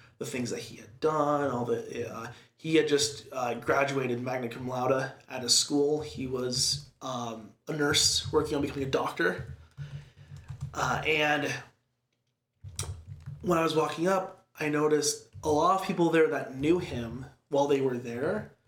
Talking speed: 165 wpm